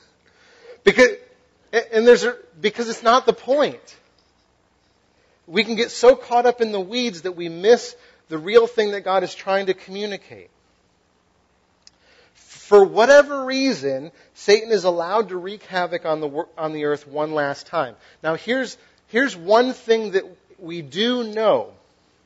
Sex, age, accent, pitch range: male, 40-59, American, 150-240 Hz